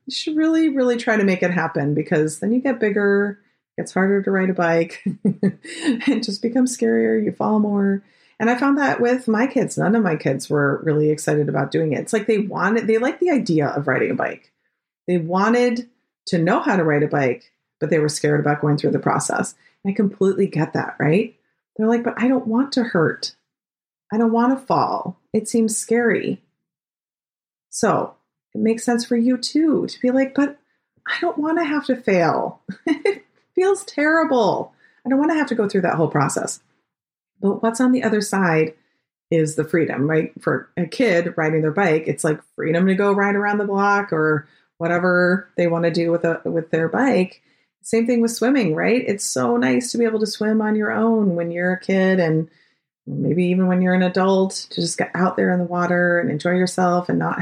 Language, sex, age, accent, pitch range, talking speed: English, female, 30-49, American, 170-235 Hz, 210 wpm